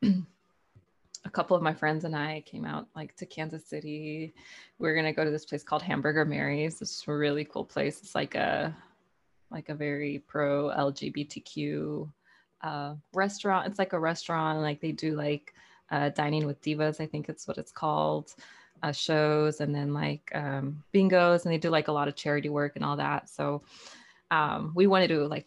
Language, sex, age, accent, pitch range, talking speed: English, female, 20-39, American, 150-185 Hz, 190 wpm